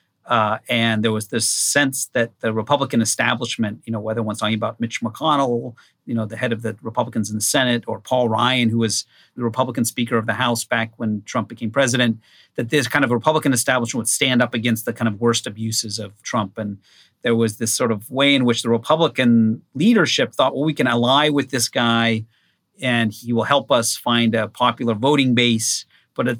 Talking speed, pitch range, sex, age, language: 210 wpm, 115-135 Hz, male, 40-59, English